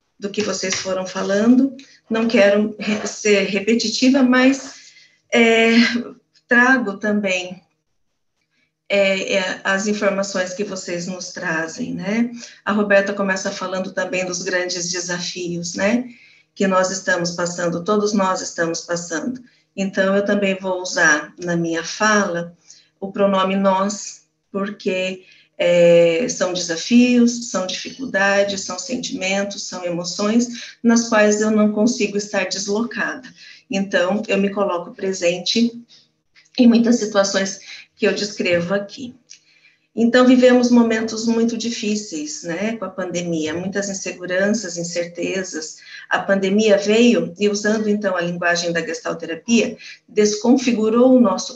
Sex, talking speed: female, 120 wpm